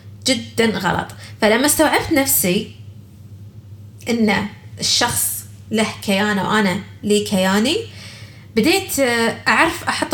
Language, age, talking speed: Arabic, 20-39, 90 wpm